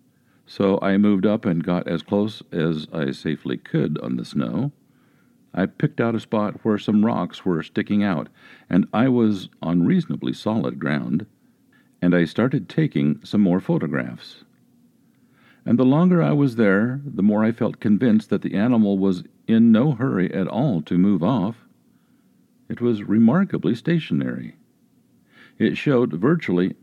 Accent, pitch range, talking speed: American, 90-125 Hz, 155 wpm